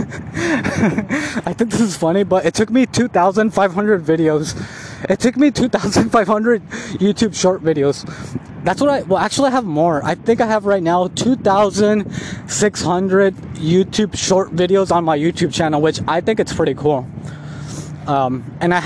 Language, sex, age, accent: English, male, 20-39, American